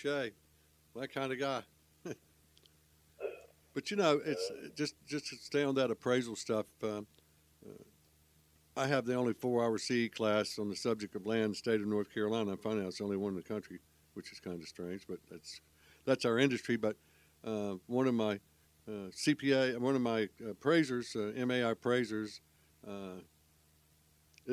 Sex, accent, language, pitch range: male, American, English, 90-125 Hz